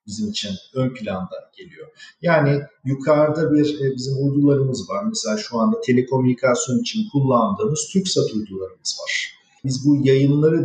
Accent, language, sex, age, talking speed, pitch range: native, Turkish, male, 50-69, 130 wpm, 130-180 Hz